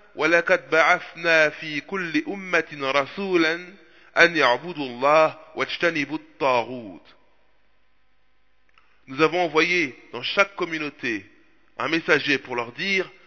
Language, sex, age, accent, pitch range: French, male, 20-39, French, 130-195 Hz